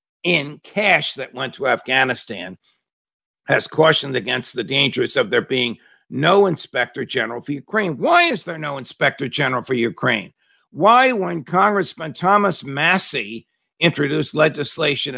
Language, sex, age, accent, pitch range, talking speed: English, male, 50-69, American, 125-175 Hz, 135 wpm